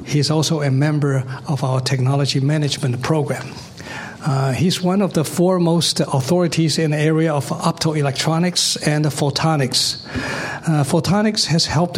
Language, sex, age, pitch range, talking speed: English, male, 60-79, 145-175 Hz, 135 wpm